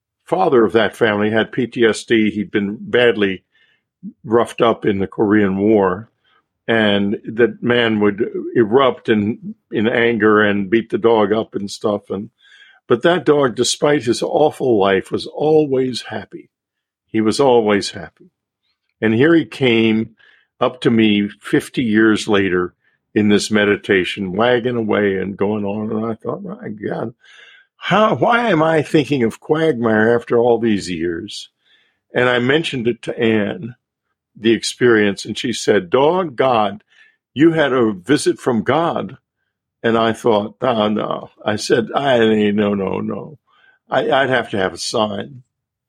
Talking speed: 155 wpm